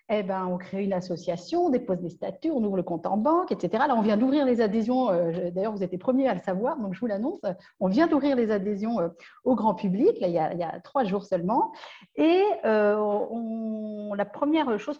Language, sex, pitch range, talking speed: French, female, 190-260 Hz, 235 wpm